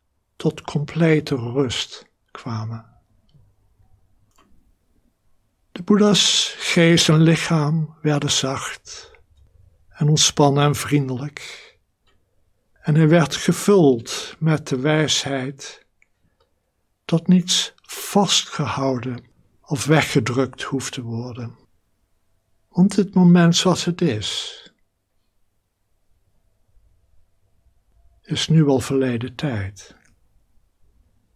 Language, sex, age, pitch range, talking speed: Dutch, male, 60-79, 100-160 Hz, 80 wpm